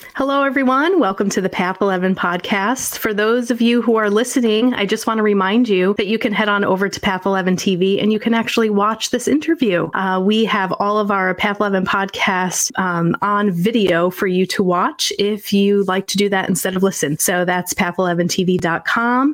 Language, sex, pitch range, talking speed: English, female, 180-220 Hz, 205 wpm